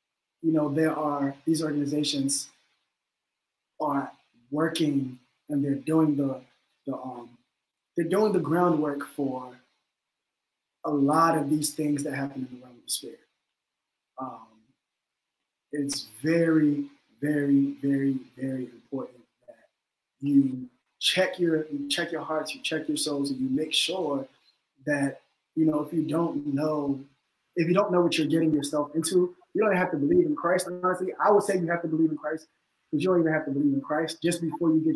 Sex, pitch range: male, 140-165 Hz